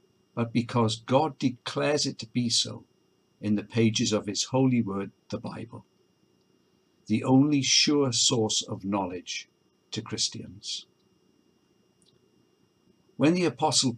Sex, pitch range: male, 110-135 Hz